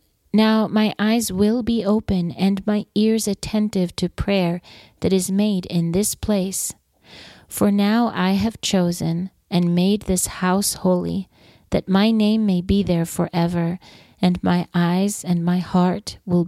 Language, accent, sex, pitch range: English, American, female, 175-205 Hz